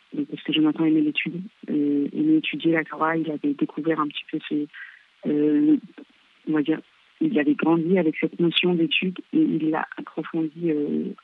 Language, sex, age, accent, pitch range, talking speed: French, female, 40-59, French, 150-200 Hz, 185 wpm